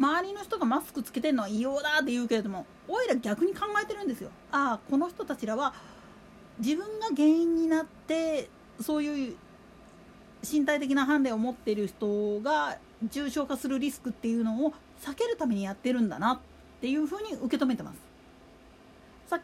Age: 40-59